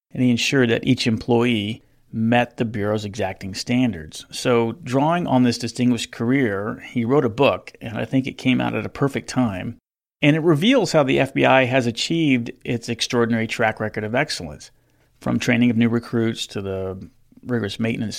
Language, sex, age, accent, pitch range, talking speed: English, male, 40-59, American, 110-130 Hz, 180 wpm